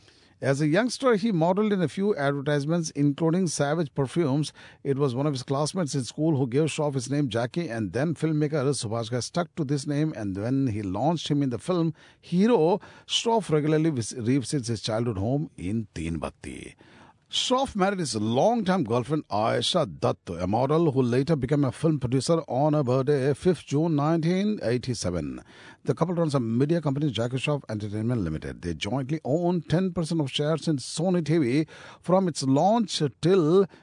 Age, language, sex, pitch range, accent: 50-69, Japanese, male, 120-160 Hz, Indian